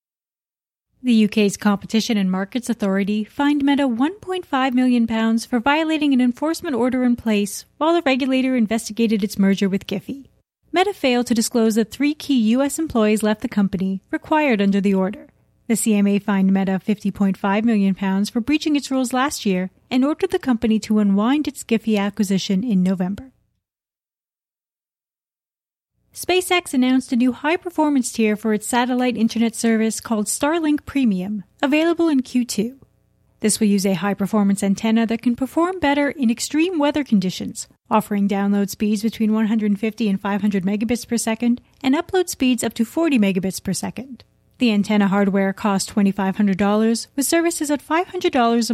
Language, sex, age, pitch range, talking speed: English, female, 30-49, 205-270 Hz, 150 wpm